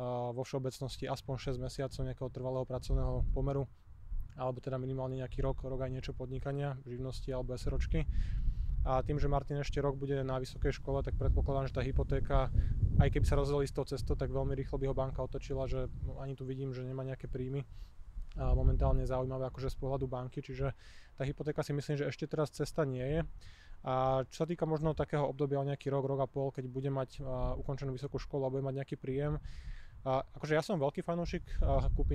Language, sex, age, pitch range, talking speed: Slovak, male, 20-39, 130-140 Hz, 205 wpm